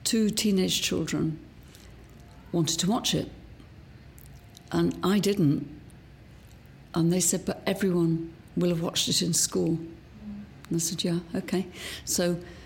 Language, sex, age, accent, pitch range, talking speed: English, female, 50-69, British, 160-180 Hz, 130 wpm